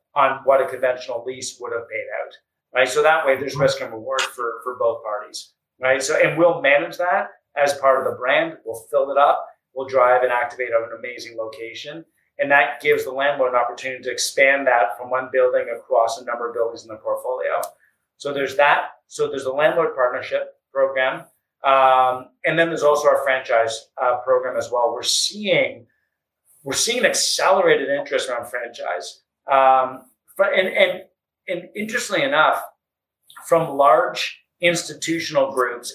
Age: 30-49